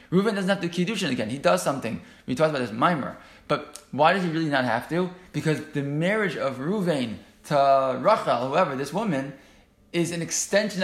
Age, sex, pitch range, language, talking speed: 20-39, male, 130-170 Hz, English, 200 wpm